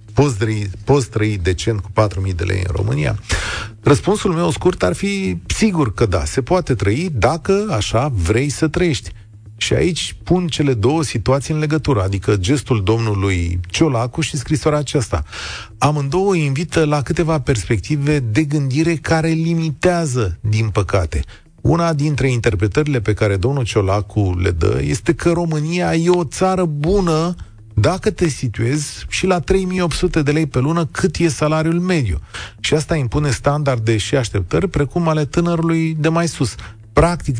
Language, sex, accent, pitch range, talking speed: Romanian, male, native, 110-160 Hz, 155 wpm